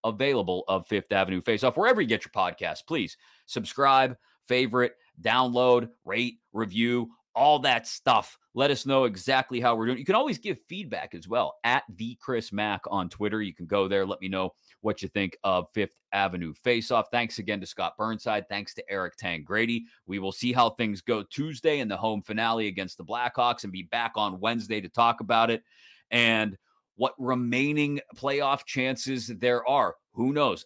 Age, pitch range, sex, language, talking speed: 30-49, 100-125 Hz, male, English, 185 wpm